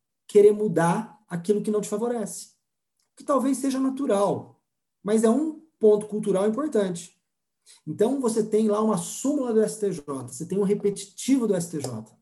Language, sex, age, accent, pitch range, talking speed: Portuguese, male, 40-59, Brazilian, 165-220 Hz, 150 wpm